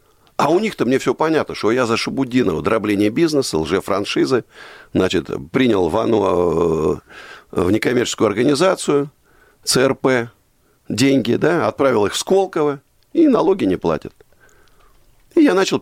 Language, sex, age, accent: Russian, male, 50-69, native